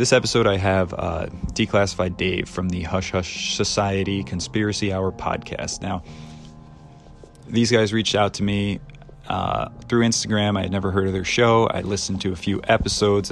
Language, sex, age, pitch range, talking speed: English, male, 20-39, 90-100 Hz, 170 wpm